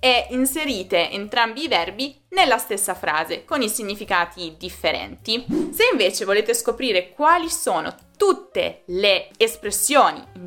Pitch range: 175-275 Hz